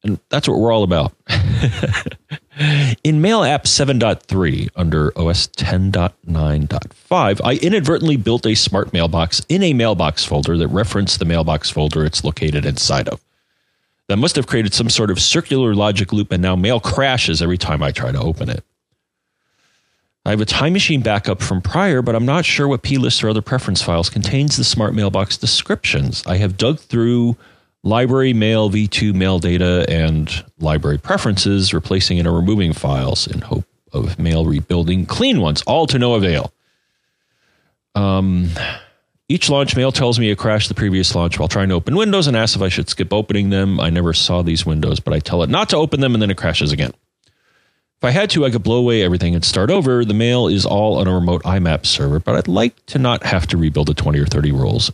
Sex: male